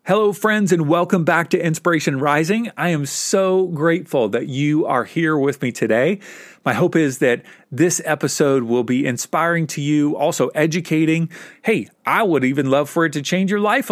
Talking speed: 185 wpm